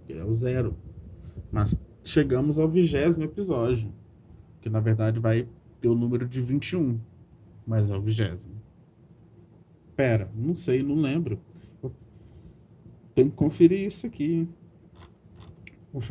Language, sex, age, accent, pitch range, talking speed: Portuguese, male, 20-39, Brazilian, 110-135 Hz, 120 wpm